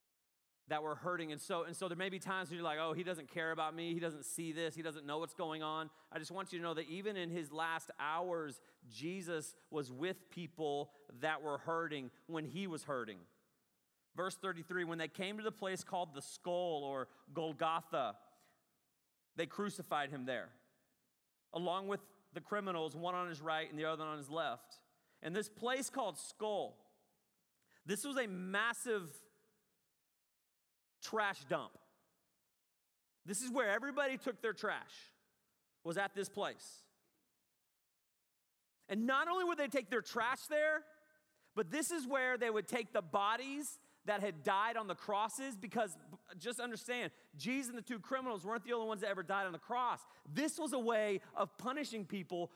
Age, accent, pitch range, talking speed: 30-49, American, 165-235 Hz, 175 wpm